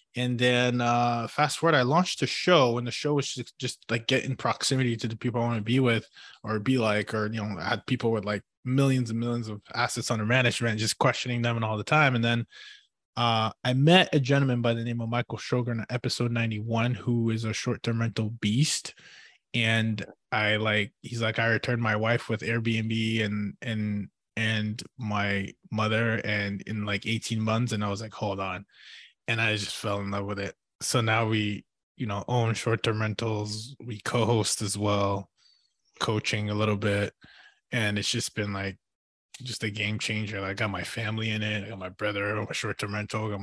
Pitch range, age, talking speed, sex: 105-120 Hz, 20-39, 210 wpm, male